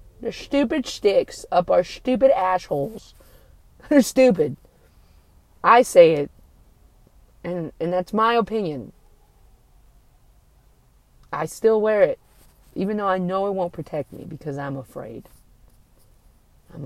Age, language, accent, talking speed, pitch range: 30-49, English, American, 115 wpm, 150-245 Hz